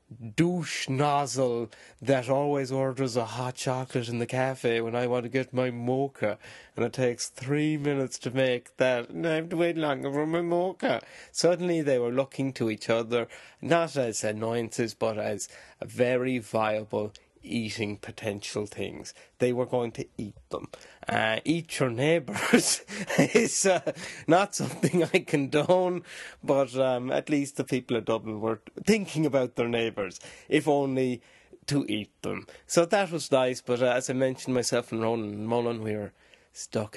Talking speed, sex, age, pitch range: 170 wpm, male, 30-49, 115-140 Hz